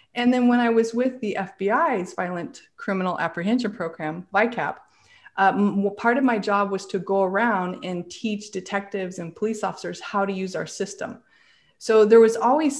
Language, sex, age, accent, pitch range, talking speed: English, female, 30-49, American, 185-230 Hz, 175 wpm